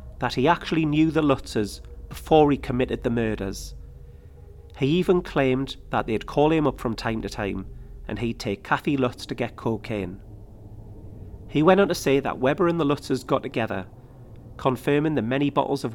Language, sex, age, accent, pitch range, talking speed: English, male, 40-59, British, 105-135 Hz, 180 wpm